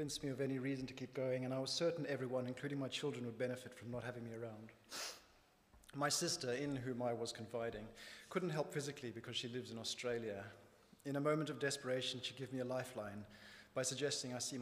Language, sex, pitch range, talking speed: English, male, 115-140 Hz, 210 wpm